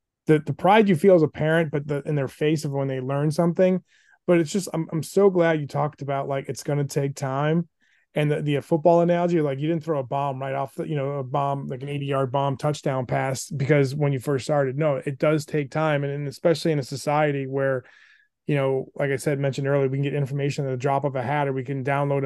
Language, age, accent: English, 20-39, American